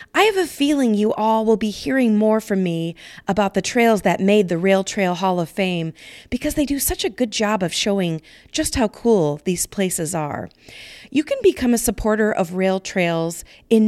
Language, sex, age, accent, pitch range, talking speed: English, female, 40-59, American, 180-245 Hz, 205 wpm